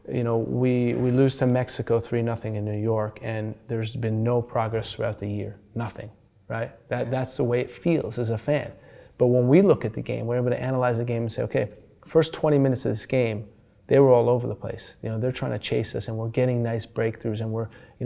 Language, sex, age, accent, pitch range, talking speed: English, male, 30-49, American, 110-125 Hz, 245 wpm